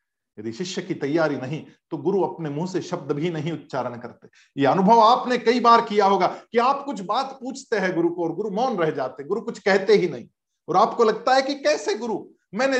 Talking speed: 220 wpm